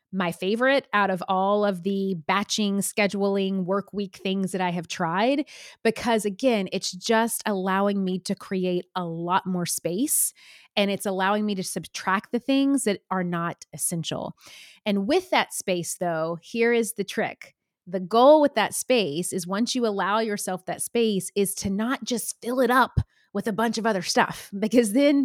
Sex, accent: female, American